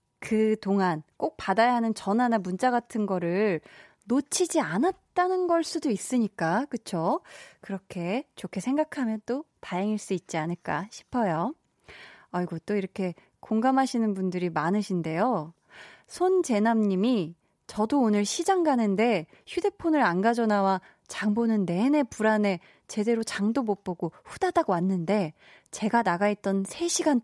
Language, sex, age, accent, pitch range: Korean, female, 20-39, native, 180-250 Hz